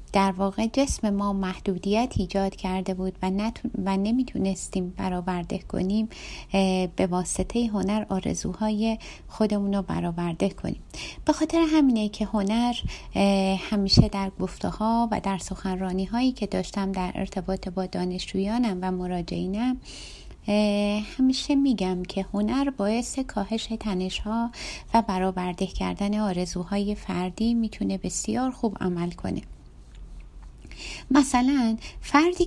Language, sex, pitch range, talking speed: Persian, female, 190-240 Hz, 115 wpm